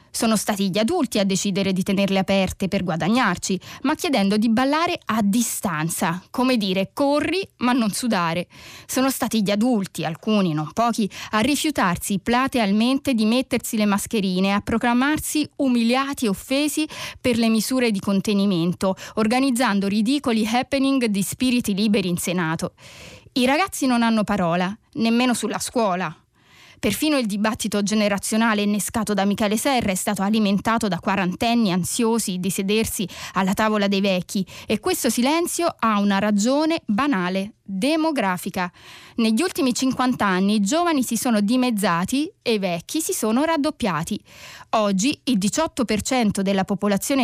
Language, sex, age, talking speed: Italian, female, 20-39, 140 wpm